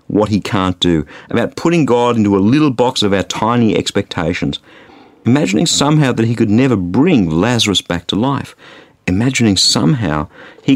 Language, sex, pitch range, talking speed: English, male, 95-145 Hz, 160 wpm